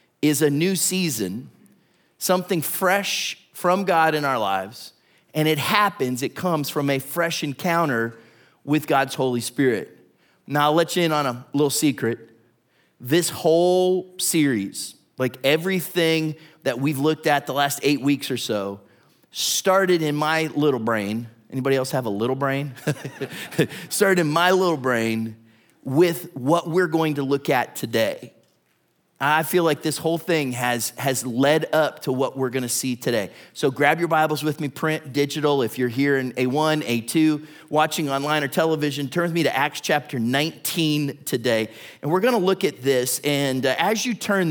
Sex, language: male, English